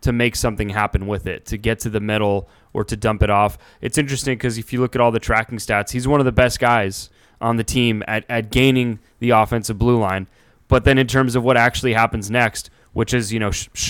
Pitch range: 110-135 Hz